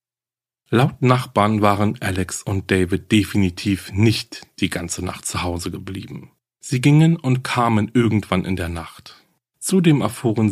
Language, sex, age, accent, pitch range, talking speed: German, male, 40-59, German, 95-120 Hz, 135 wpm